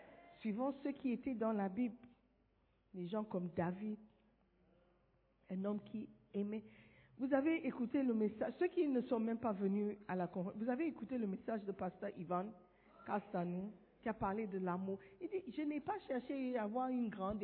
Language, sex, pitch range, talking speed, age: French, female, 210-315 Hz, 185 wpm, 50-69